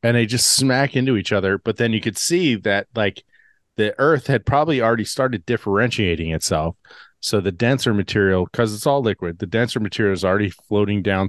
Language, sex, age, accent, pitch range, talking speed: English, male, 40-59, American, 95-115 Hz, 195 wpm